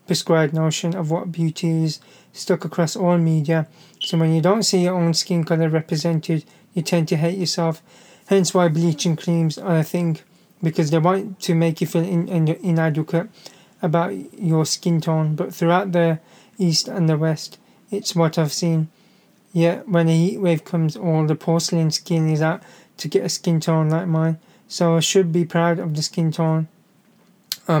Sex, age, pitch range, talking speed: male, 20-39, 160-180 Hz, 180 wpm